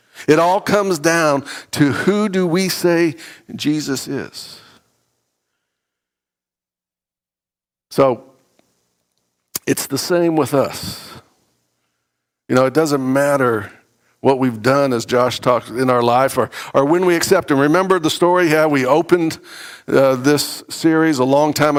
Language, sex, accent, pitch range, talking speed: English, male, American, 120-170 Hz, 135 wpm